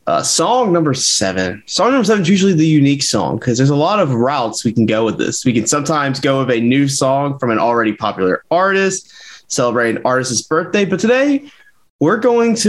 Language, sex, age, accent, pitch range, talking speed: English, male, 20-39, American, 125-175 Hz, 215 wpm